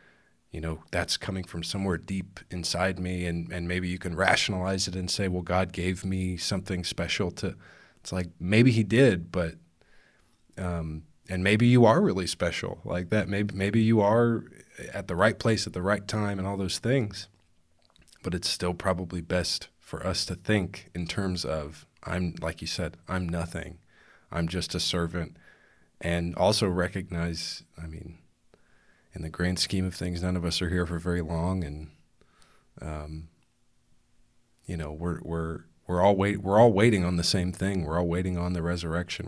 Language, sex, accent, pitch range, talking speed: English, male, American, 85-95 Hz, 180 wpm